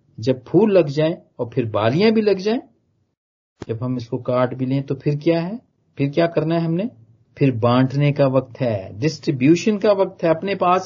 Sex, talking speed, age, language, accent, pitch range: male, 200 wpm, 40-59, Hindi, native, 120-160 Hz